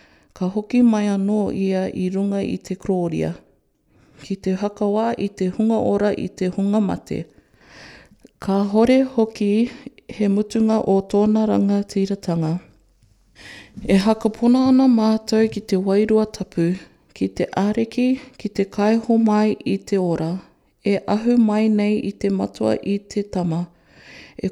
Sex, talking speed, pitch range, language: female, 145 wpm, 190-220 Hz, English